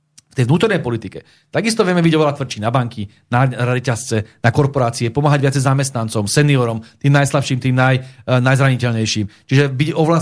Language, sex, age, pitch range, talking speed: Slovak, male, 40-59, 135-170 Hz, 165 wpm